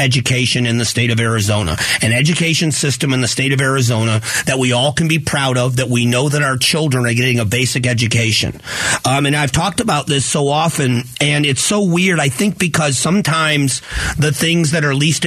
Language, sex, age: English, male, 40-59